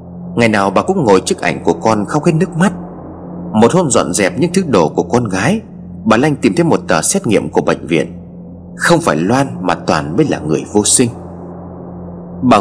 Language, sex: Vietnamese, male